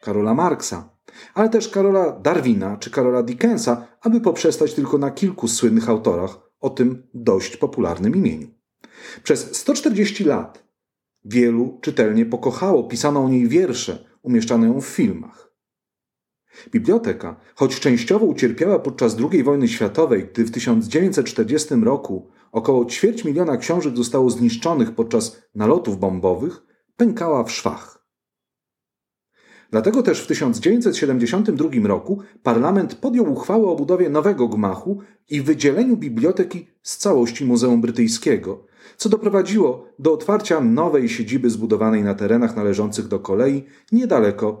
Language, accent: Polish, native